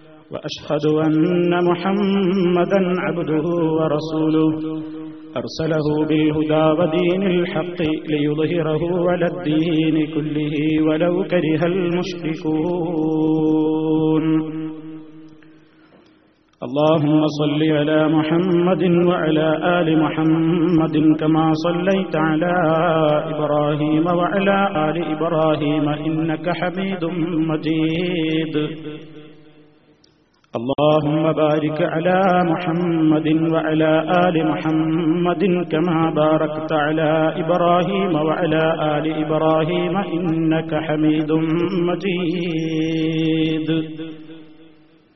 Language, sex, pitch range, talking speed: Malayalam, male, 155-170 Hz, 65 wpm